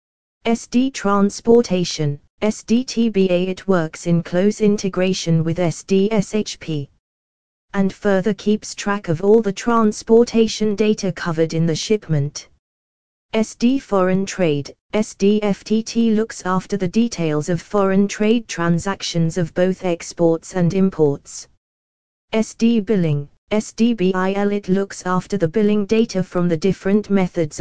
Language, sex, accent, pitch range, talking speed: English, female, British, 165-215 Hz, 115 wpm